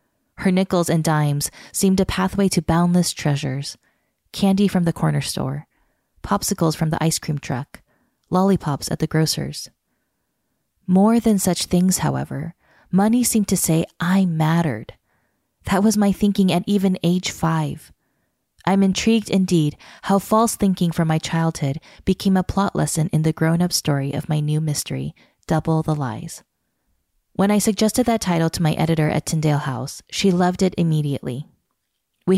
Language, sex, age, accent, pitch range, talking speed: English, female, 20-39, American, 155-190 Hz, 155 wpm